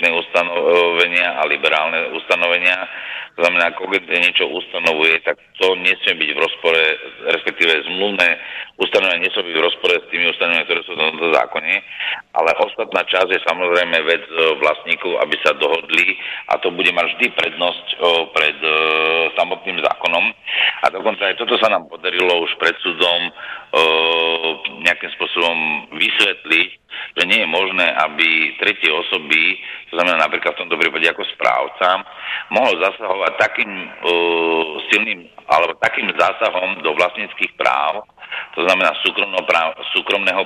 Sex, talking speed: male, 140 wpm